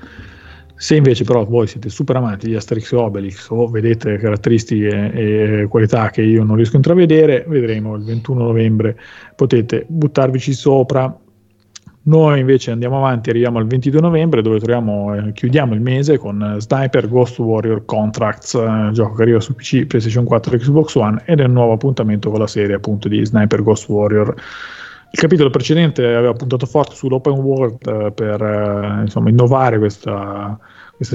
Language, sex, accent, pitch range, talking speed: Italian, male, native, 110-130 Hz, 160 wpm